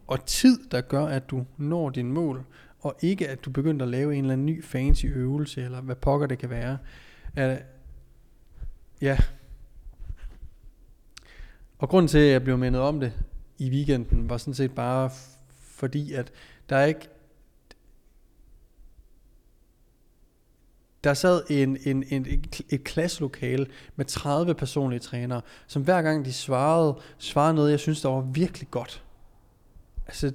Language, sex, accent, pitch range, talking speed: Danish, male, native, 125-155 Hz, 155 wpm